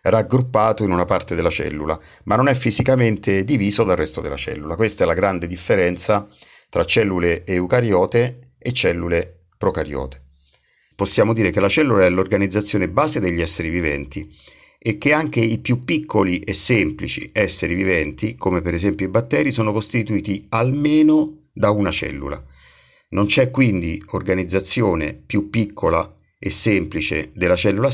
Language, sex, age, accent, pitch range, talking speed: Italian, male, 50-69, native, 85-115 Hz, 145 wpm